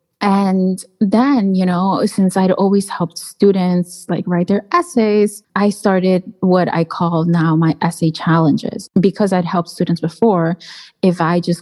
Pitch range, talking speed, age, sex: 170-215 Hz, 155 wpm, 20-39, female